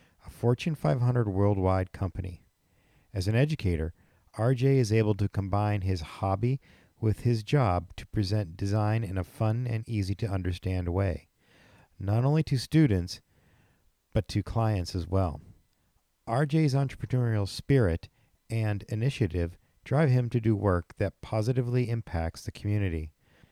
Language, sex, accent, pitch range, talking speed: English, male, American, 95-115 Hz, 130 wpm